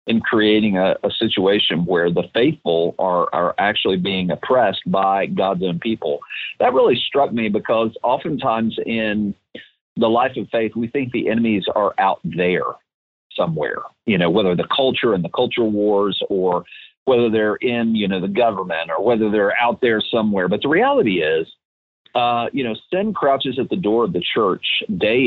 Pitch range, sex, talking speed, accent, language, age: 95-120 Hz, male, 175 wpm, American, English, 40-59